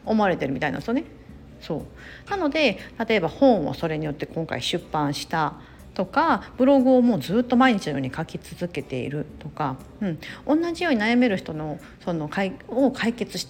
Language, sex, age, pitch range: Japanese, female, 40-59, 160-255 Hz